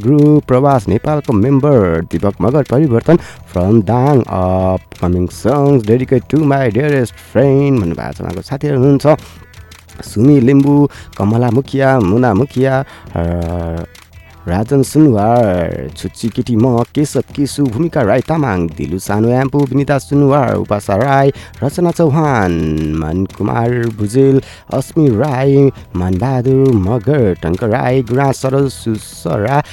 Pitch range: 95-140 Hz